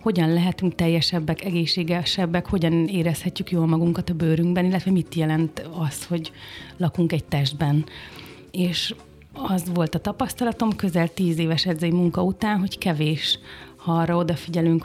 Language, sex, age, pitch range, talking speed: Hungarian, female, 30-49, 160-180 Hz, 135 wpm